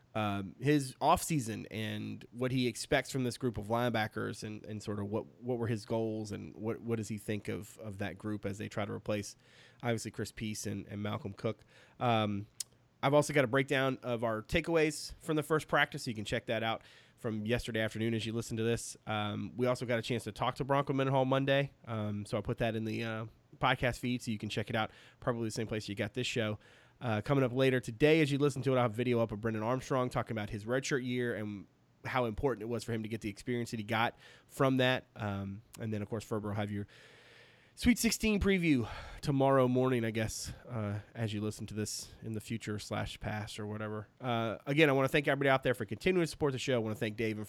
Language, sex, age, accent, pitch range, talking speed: English, male, 30-49, American, 110-130 Hz, 245 wpm